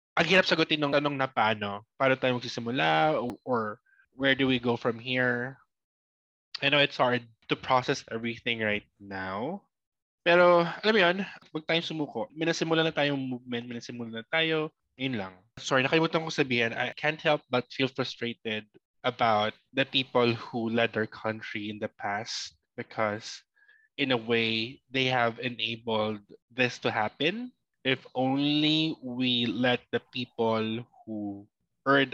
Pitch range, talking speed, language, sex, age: 115-145 Hz, 150 wpm, Filipino, male, 20-39